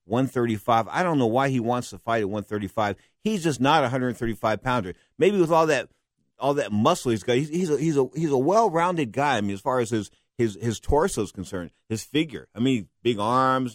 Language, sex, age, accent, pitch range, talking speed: English, male, 50-69, American, 105-135 Hz, 240 wpm